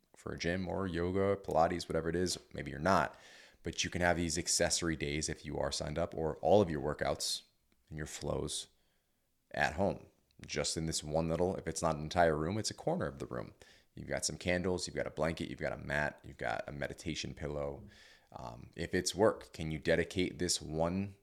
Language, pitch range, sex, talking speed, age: English, 80-95 Hz, male, 220 wpm, 30-49